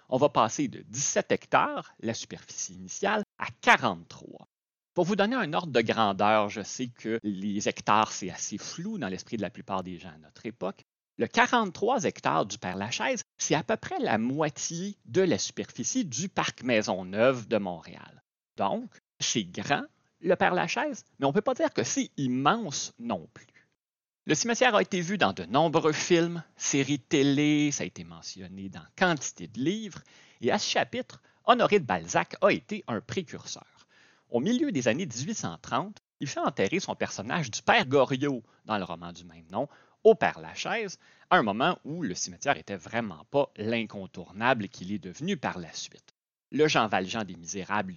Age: 30-49